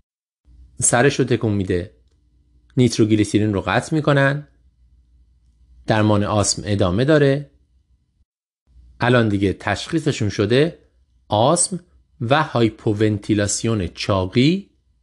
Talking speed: 80 wpm